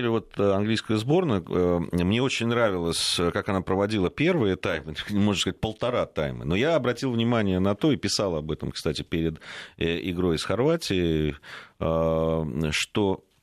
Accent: native